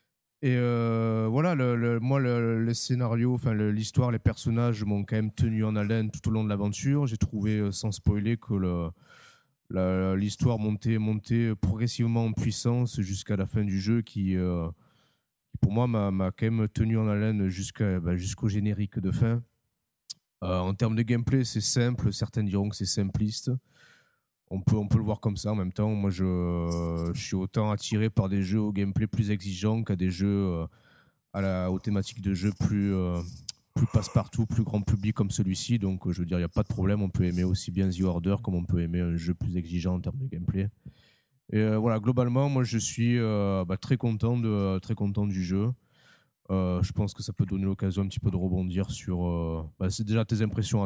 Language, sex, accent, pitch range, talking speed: French, male, French, 95-115 Hz, 210 wpm